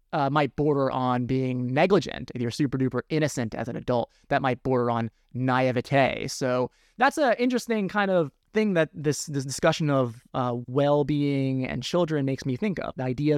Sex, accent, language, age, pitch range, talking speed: male, American, English, 30-49, 130-170 Hz, 185 wpm